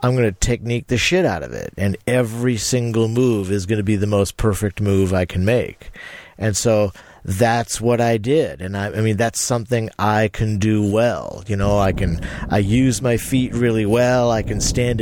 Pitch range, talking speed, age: 105-130 Hz, 210 wpm, 50-69